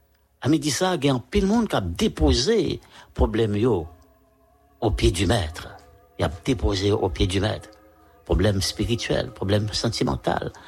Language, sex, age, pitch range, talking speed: English, male, 60-79, 95-130 Hz, 165 wpm